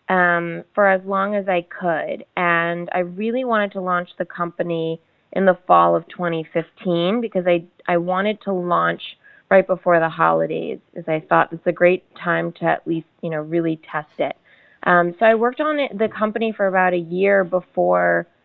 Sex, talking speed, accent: female, 185 wpm, American